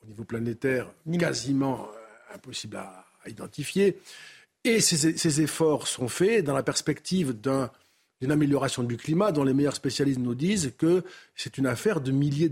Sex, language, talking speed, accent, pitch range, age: male, French, 145 wpm, French, 130-180 Hz, 50-69